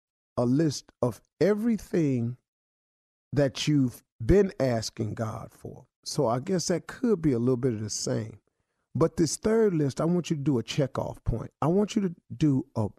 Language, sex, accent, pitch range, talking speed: English, male, American, 115-170 Hz, 185 wpm